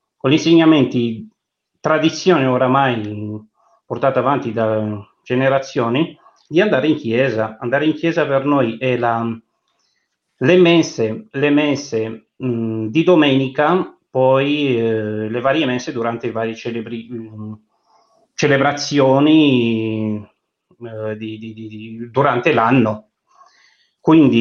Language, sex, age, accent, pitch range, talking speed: Italian, male, 30-49, native, 110-135 Hz, 100 wpm